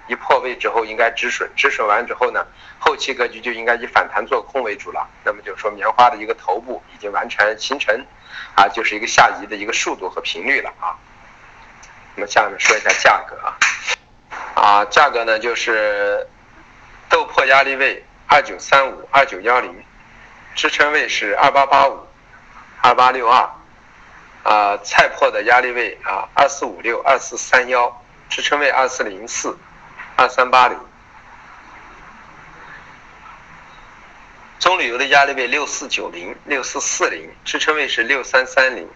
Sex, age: male, 50-69